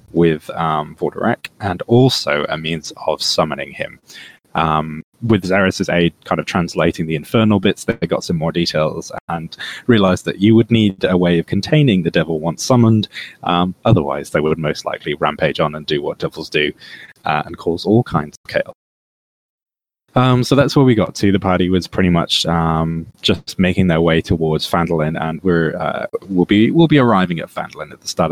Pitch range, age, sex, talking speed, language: 85-110 Hz, 20-39, male, 195 wpm, English